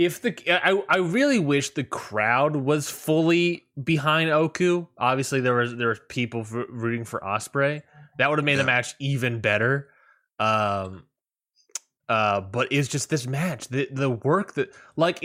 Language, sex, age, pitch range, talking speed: English, male, 20-39, 115-155 Hz, 165 wpm